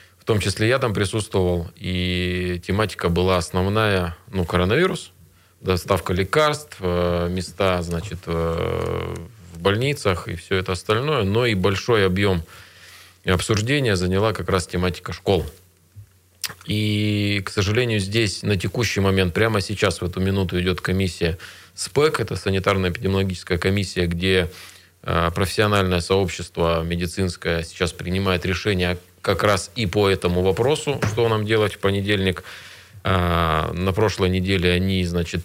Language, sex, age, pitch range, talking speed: Russian, male, 20-39, 90-100 Hz, 125 wpm